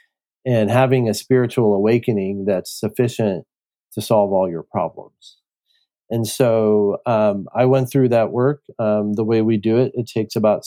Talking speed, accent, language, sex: 165 wpm, American, English, male